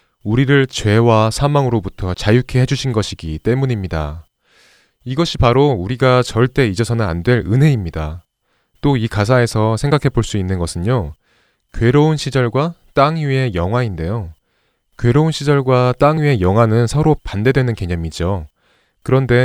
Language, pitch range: Korean, 95-135 Hz